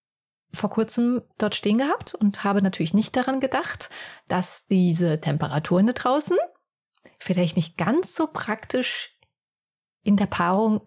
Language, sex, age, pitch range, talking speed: German, female, 30-49, 180-230 Hz, 130 wpm